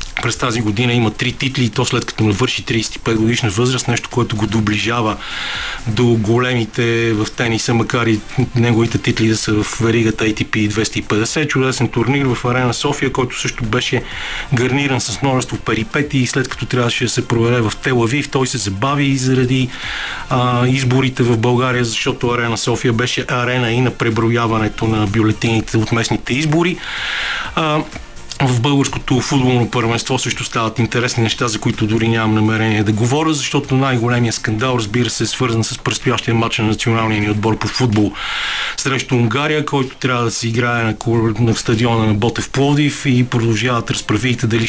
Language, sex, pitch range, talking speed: Bulgarian, male, 115-130 Hz, 165 wpm